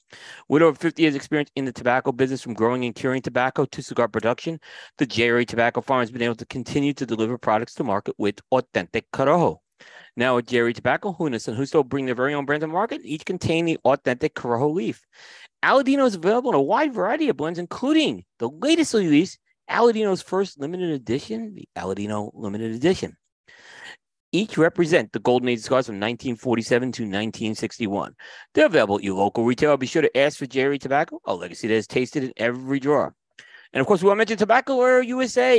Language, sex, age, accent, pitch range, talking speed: English, male, 30-49, American, 120-180 Hz, 195 wpm